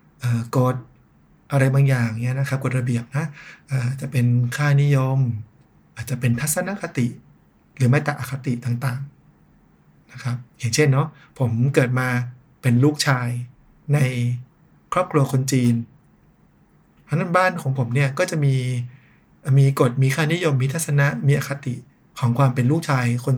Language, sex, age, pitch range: Thai, male, 60-79, 125-140 Hz